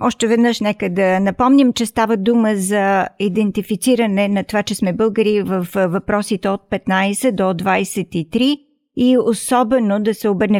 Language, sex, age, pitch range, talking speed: Bulgarian, female, 50-69, 190-230 Hz, 145 wpm